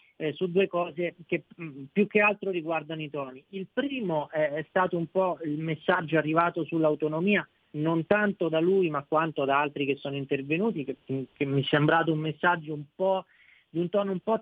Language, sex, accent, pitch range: Italian, male, native, 140-170 Hz